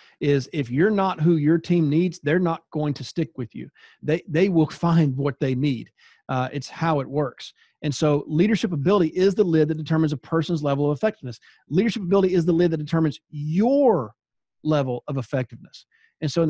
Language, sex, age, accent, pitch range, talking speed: English, male, 40-59, American, 140-170 Hz, 200 wpm